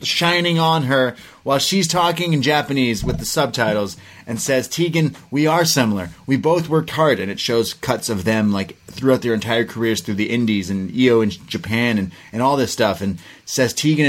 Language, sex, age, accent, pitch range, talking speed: English, male, 30-49, American, 100-135 Hz, 200 wpm